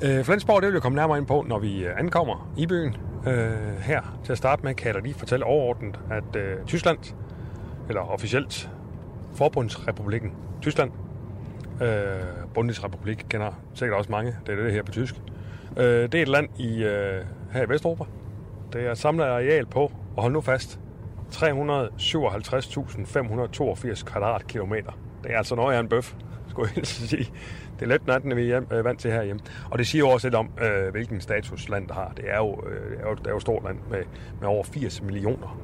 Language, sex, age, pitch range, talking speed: Danish, male, 30-49, 105-125 Hz, 195 wpm